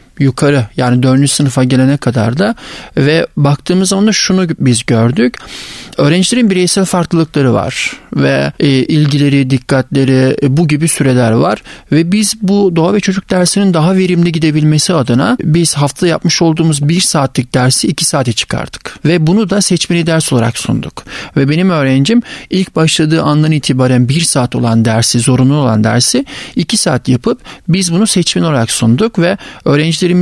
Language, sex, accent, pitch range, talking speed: Turkish, male, native, 135-180 Hz, 155 wpm